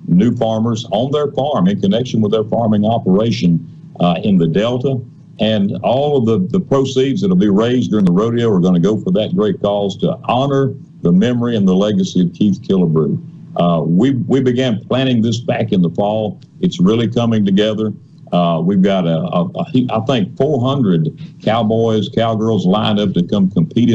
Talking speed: 190 wpm